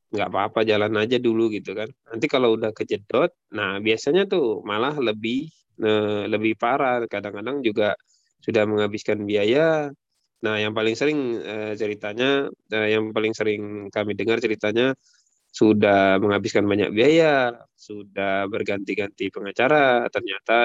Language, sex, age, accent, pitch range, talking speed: Indonesian, male, 20-39, native, 105-135 Hz, 130 wpm